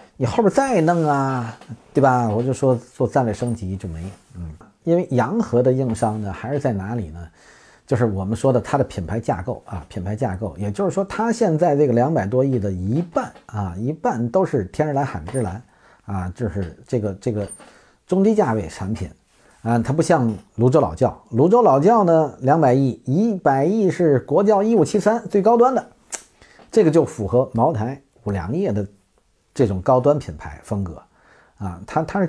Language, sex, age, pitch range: Chinese, male, 50-69, 105-150 Hz